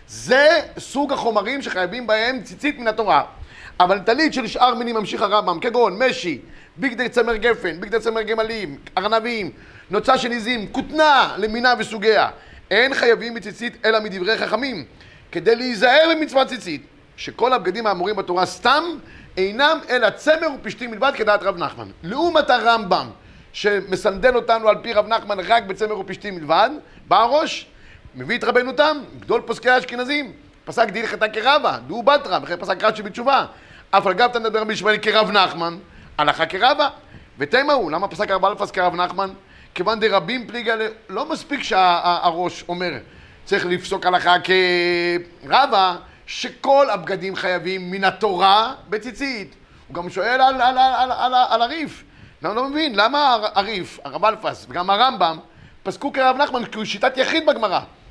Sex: male